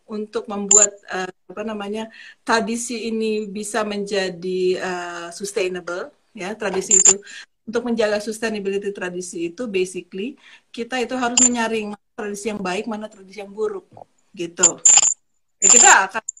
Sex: female